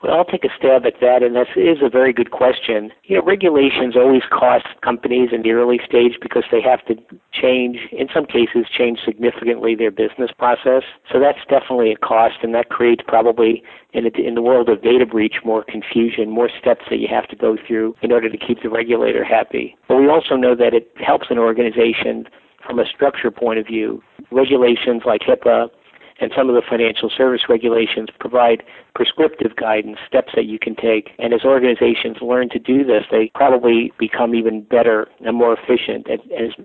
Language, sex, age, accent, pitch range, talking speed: English, male, 50-69, American, 110-125 Hz, 200 wpm